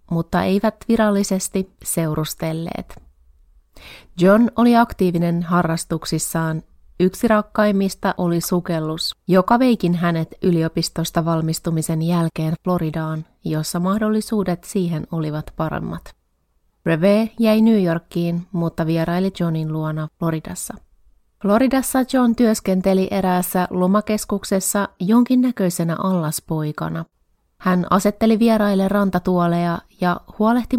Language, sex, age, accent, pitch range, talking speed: Finnish, female, 30-49, native, 160-200 Hz, 90 wpm